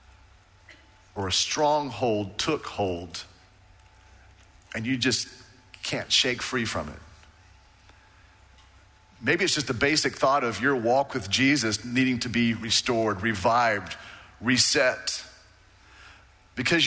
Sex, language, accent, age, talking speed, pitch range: male, English, American, 40-59, 110 wpm, 95-120 Hz